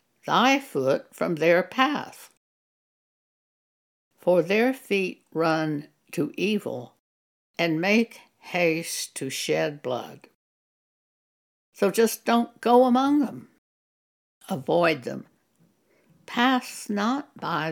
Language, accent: English, American